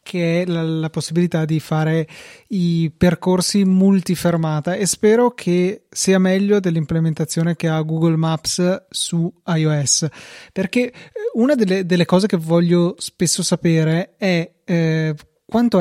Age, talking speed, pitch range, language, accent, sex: 30-49, 135 wpm, 160-185 Hz, Italian, native, male